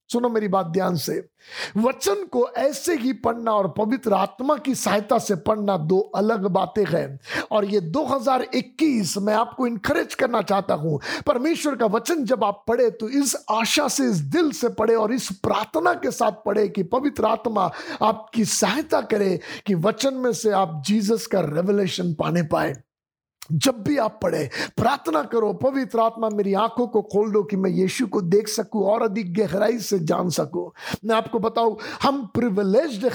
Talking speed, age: 175 wpm, 50-69